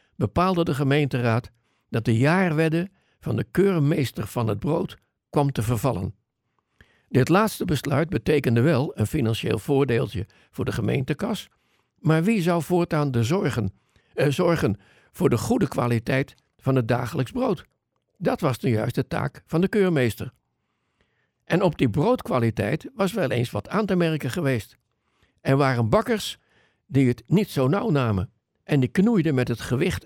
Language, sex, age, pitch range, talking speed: Dutch, male, 60-79, 125-160 Hz, 150 wpm